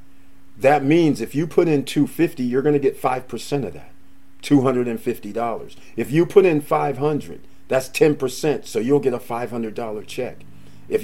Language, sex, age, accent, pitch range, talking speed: English, male, 50-69, American, 110-145 Hz, 165 wpm